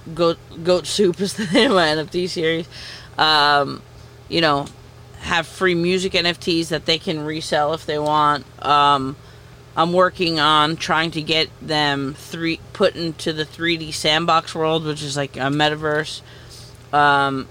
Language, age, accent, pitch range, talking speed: English, 30-49, American, 145-170 Hz, 155 wpm